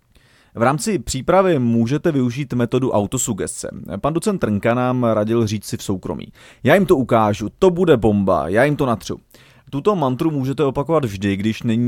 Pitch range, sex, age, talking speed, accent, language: 110-145 Hz, male, 30-49, 170 wpm, native, Czech